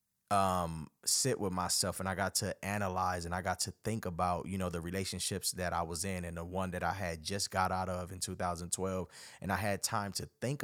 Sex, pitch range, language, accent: male, 90-105 Hz, English, American